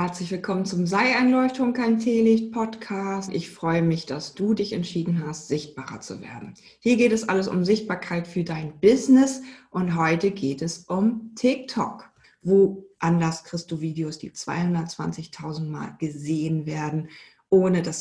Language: German